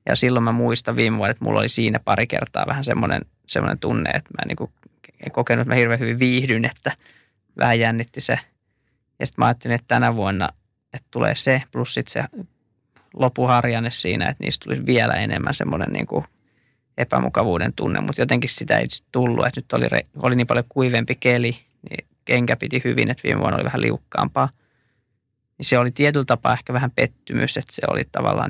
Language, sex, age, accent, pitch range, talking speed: Finnish, male, 20-39, native, 115-130 Hz, 185 wpm